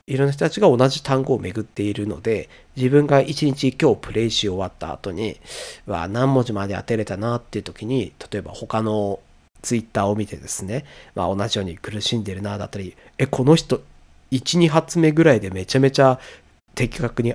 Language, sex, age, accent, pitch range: Japanese, male, 40-59, native, 100-140 Hz